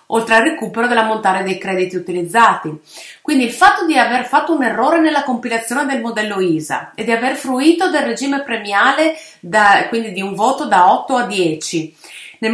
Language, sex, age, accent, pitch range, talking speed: Italian, female, 30-49, native, 190-275 Hz, 175 wpm